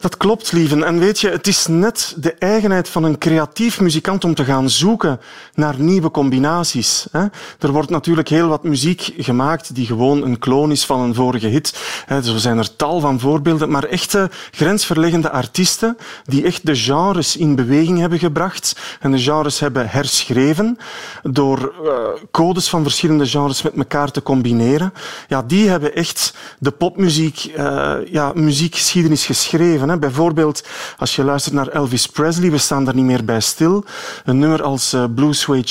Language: Dutch